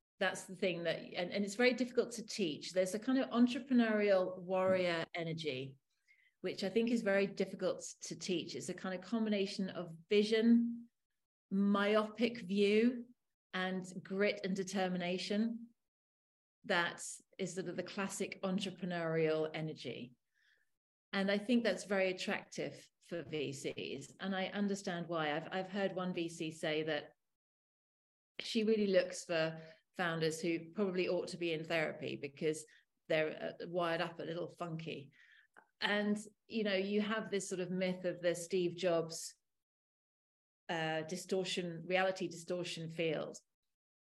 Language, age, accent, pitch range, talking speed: English, 40-59, British, 170-210 Hz, 140 wpm